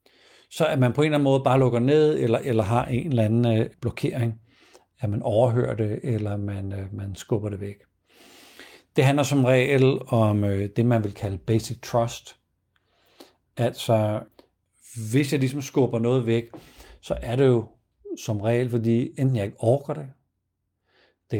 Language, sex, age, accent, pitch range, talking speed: Danish, male, 60-79, native, 110-135 Hz, 175 wpm